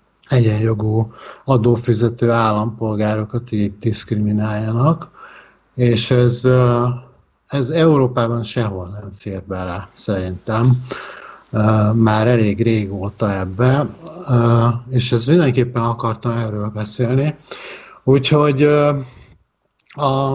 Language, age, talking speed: Hungarian, 50-69, 75 wpm